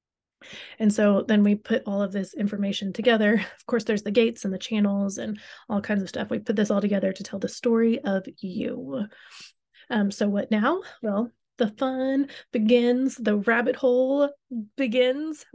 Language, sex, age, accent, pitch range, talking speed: English, female, 30-49, American, 210-250 Hz, 180 wpm